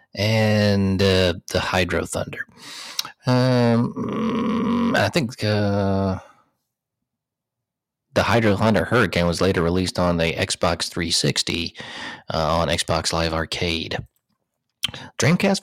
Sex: male